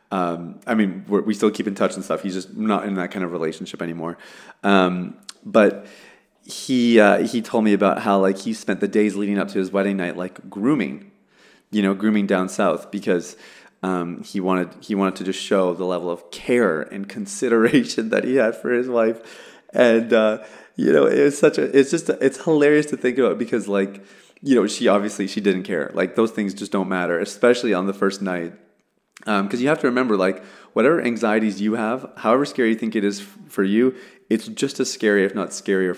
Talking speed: 215 wpm